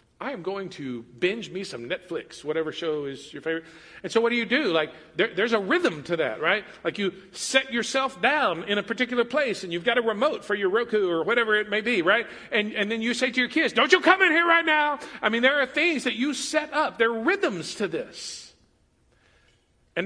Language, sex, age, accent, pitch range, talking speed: English, male, 50-69, American, 200-270 Hz, 240 wpm